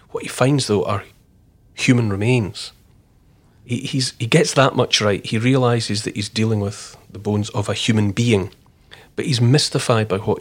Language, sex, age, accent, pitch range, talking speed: English, male, 40-59, British, 105-125 Hz, 180 wpm